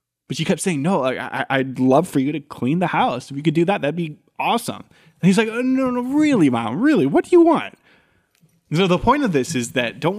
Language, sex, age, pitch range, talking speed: English, male, 20-39, 130-170 Hz, 245 wpm